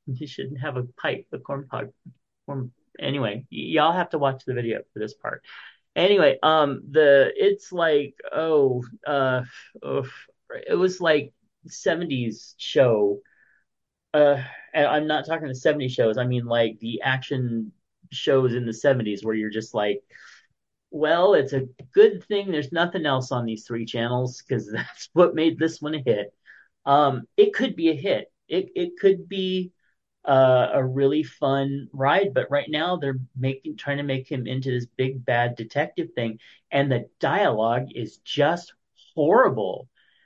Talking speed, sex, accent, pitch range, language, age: 160 wpm, male, American, 125-165 Hz, English, 30-49